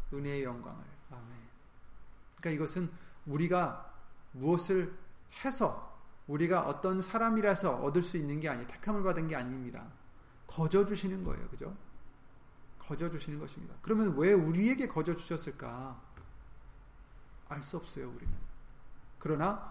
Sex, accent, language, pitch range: male, native, Korean, 125-185 Hz